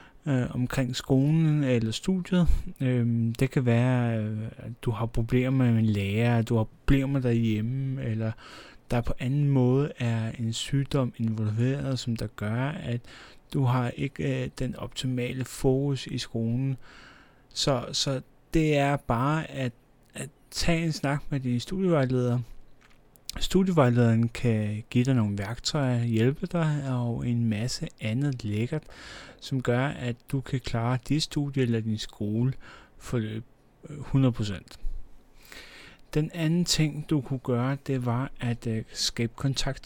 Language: Danish